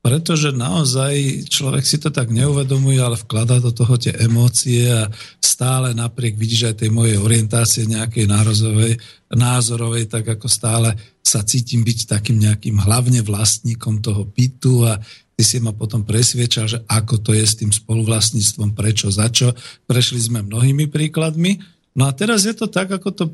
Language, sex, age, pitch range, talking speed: Slovak, male, 40-59, 115-140 Hz, 160 wpm